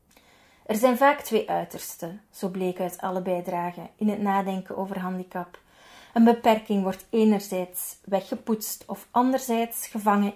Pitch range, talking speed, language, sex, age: 195-245 Hz, 135 wpm, Dutch, female, 30-49